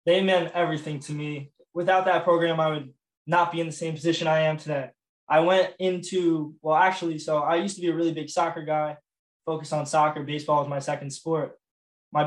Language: English